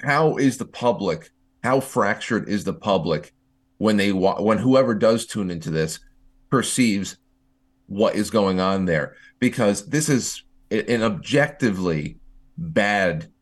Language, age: English, 30-49